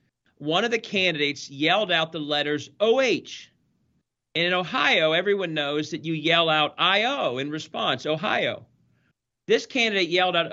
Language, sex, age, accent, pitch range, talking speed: English, male, 40-59, American, 140-195 Hz, 150 wpm